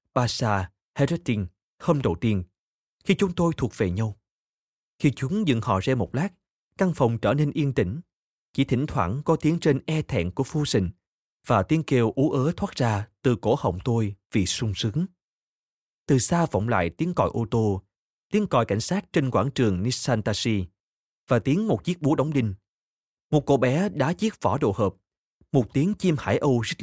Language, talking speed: Vietnamese, 190 wpm